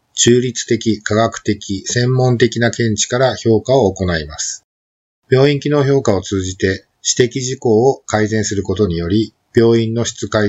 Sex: male